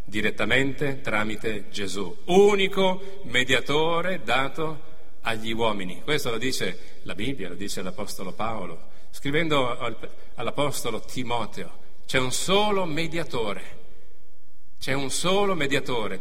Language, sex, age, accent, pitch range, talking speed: Italian, male, 40-59, native, 110-155 Hz, 105 wpm